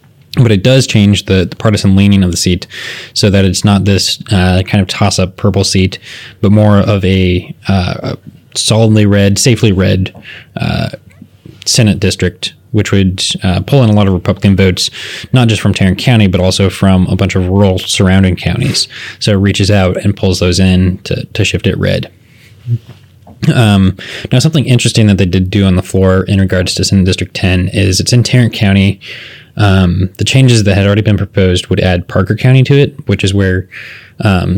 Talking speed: 195 wpm